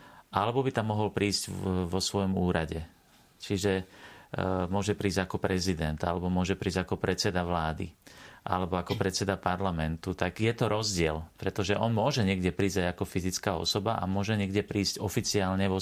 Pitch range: 90-100 Hz